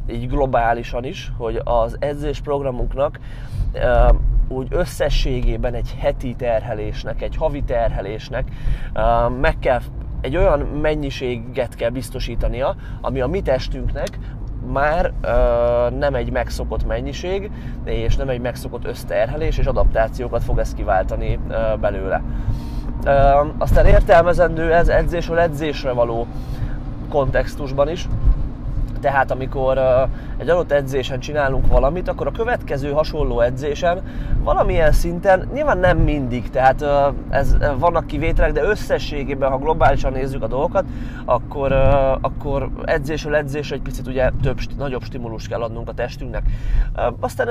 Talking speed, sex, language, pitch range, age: 125 wpm, male, Hungarian, 120-145 Hz, 20-39